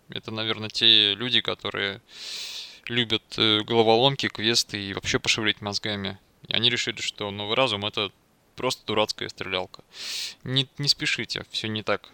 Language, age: Russian, 20-39